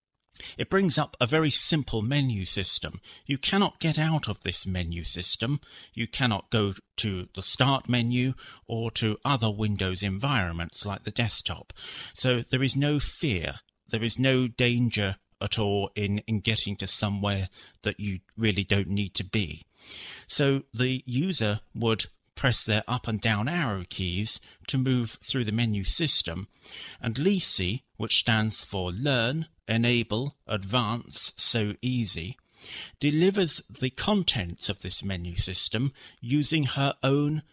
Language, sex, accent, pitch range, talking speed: English, male, British, 100-135 Hz, 145 wpm